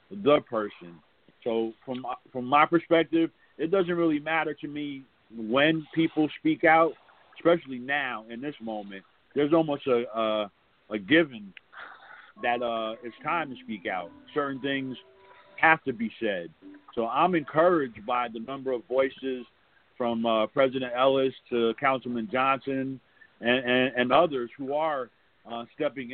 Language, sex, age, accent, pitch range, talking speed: English, male, 50-69, American, 115-150 Hz, 145 wpm